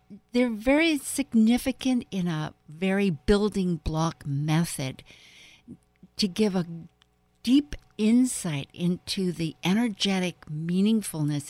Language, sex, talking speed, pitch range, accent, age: English, female, 95 wpm, 155-200 Hz, American, 60-79